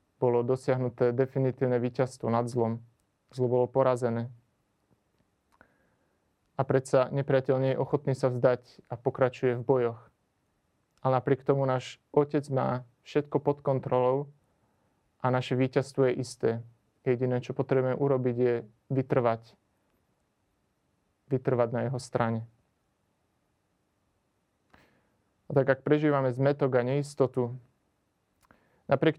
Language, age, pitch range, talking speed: Slovak, 30-49, 120-135 Hz, 105 wpm